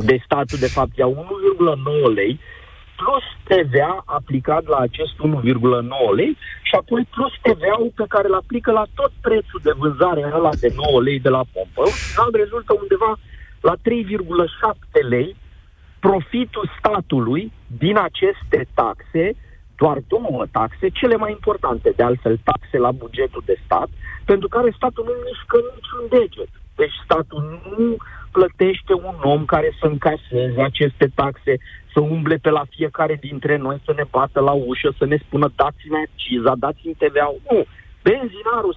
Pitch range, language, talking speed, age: 145-245 Hz, Romanian, 150 wpm, 40-59